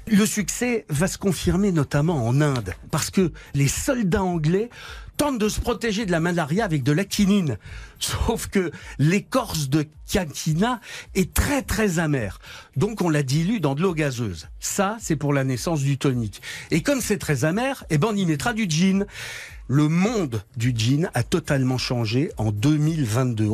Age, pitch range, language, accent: 60-79, 130-180 Hz, French, French